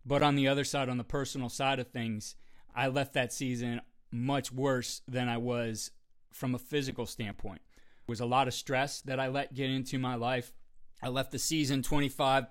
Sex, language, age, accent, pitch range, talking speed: male, English, 30-49, American, 115-135 Hz, 200 wpm